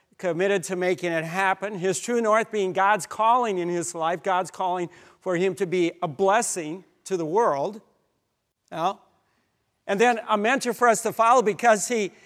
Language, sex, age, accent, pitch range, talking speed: English, male, 50-69, American, 175-225 Hz, 175 wpm